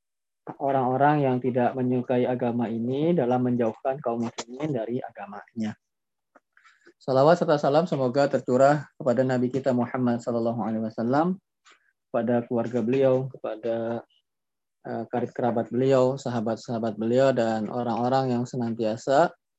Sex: male